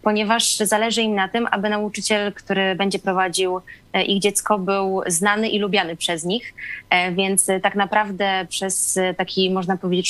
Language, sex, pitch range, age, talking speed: Polish, female, 185-215 Hz, 20-39, 150 wpm